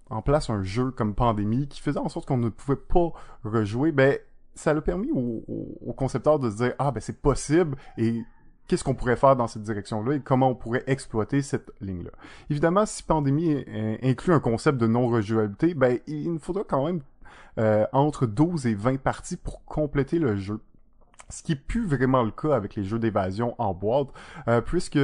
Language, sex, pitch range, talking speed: French, male, 110-140 Hz, 200 wpm